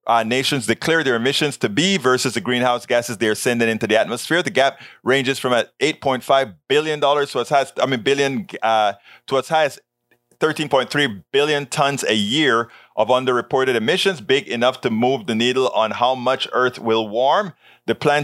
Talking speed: 195 wpm